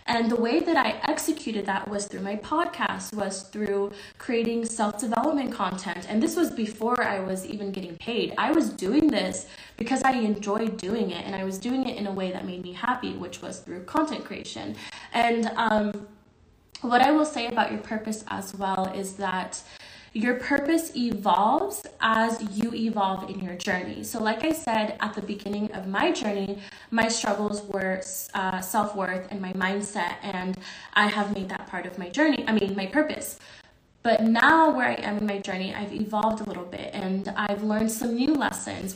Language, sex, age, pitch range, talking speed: English, female, 20-39, 195-235 Hz, 190 wpm